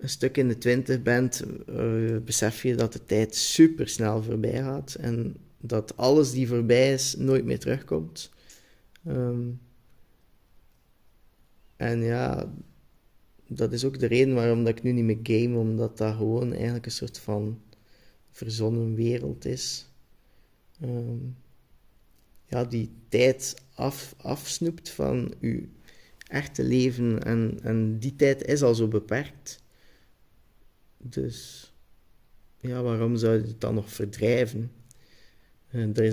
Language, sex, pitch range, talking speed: Dutch, male, 110-130 Hz, 130 wpm